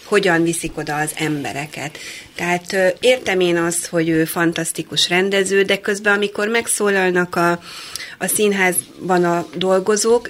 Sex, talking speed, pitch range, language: female, 130 wpm, 165-190 Hz, Hungarian